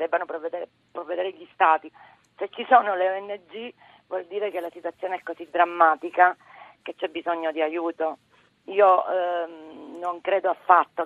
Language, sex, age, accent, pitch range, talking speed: Italian, female, 40-59, native, 175-230 Hz, 150 wpm